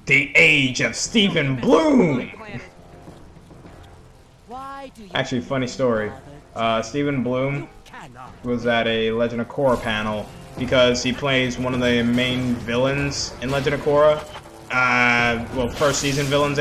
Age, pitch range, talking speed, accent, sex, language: 20-39, 115-150 Hz, 125 wpm, American, male, English